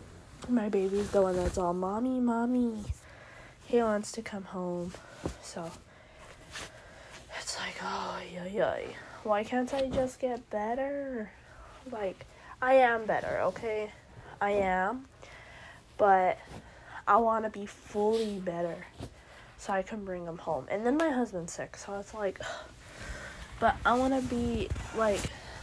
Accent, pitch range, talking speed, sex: American, 190-225 Hz, 135 wpm, female